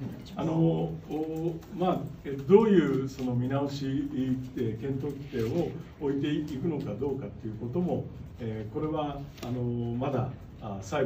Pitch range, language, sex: 120-170 Hz, Japanese, male